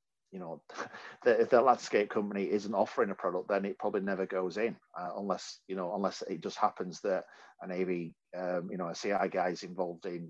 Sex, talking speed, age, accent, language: male, 210 wpm, 40-59, British, English